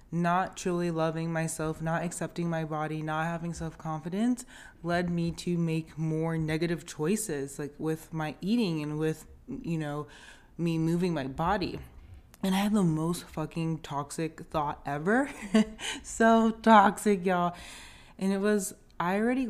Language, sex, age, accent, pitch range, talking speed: English, female, 20-39, American, 150-180 Hz, 145 wpm